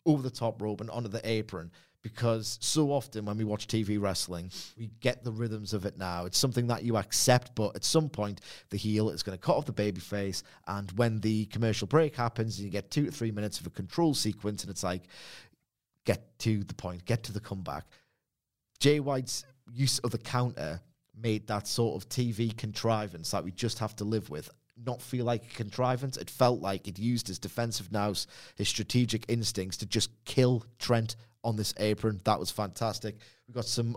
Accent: British